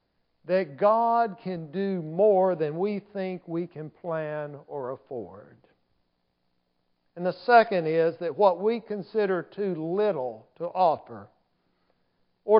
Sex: male